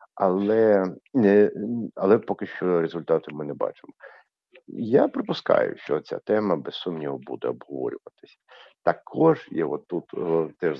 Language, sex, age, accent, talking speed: Ukrainian, male, 50-69, native, 115 wpm